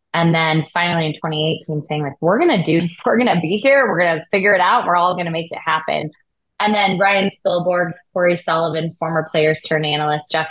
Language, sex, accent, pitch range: English, female, American, 155-175 Hz